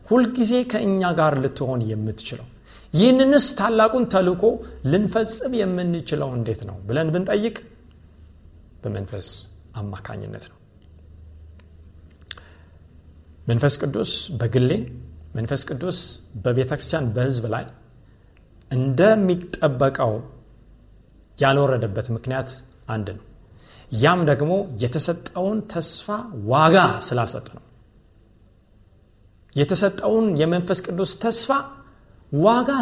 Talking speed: 80 wpm